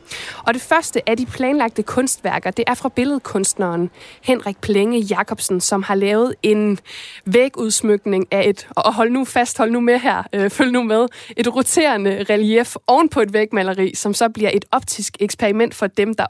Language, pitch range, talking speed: Danish, 195-235 Hz, 135 wpm